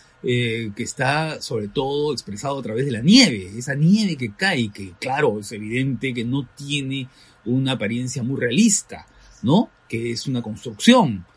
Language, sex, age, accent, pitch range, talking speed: Spanish, male, 40-59, Mexican, 115-155 Hz, 160 wpm